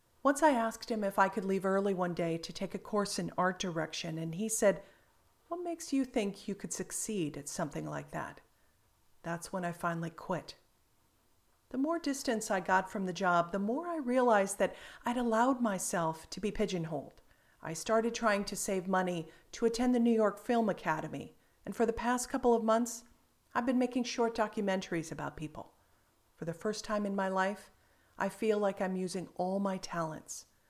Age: 40-59